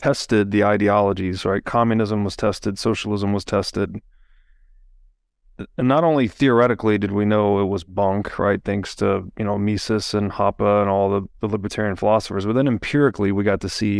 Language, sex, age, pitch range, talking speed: English, male, 30-49, 100-115 Hz, 175 wpm